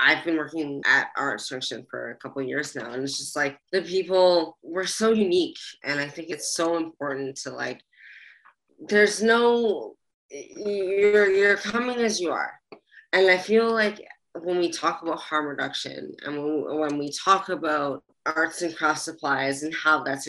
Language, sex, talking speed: English, female, 180 wpm